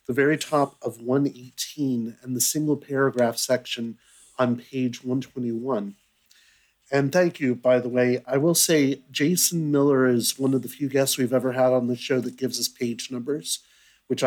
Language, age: English, 50-69